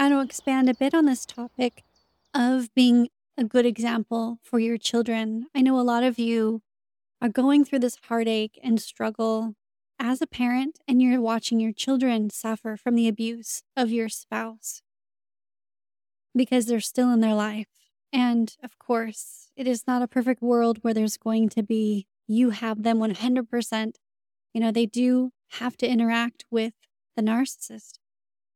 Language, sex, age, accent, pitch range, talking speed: English, female, 20-39, American, 215-250 Hz, 165 wpm